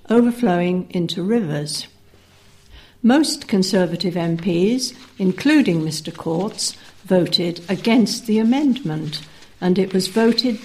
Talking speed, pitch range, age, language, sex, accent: 95 wpm, 175-230 Hz, 60-79, English, female, British